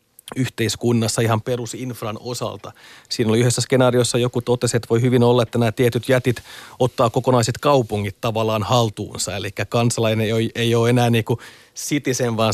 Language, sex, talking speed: Finnish, male, 155 wpm